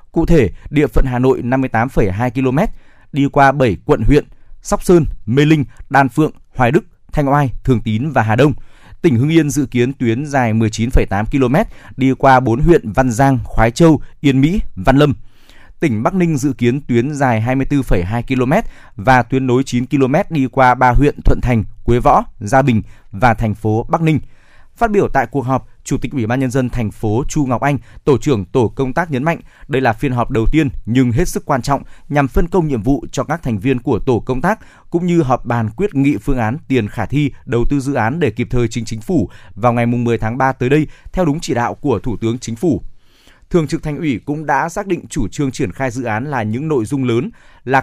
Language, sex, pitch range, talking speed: Vietnamese, male, 120-145 Hz, 230 wpm